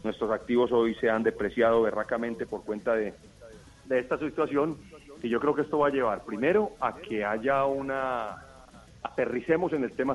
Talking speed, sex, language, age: 175 wpm, male, Spanish, 40-59